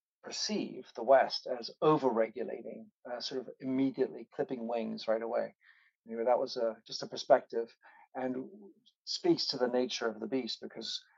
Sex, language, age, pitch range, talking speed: male, English, 40-59, 110-130 Hz, 160 wpm